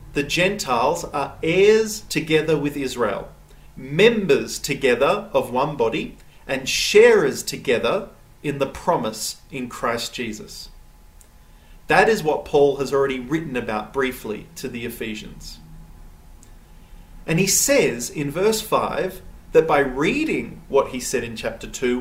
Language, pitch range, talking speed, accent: English, 135-215 Hz, 130 wpm, Australian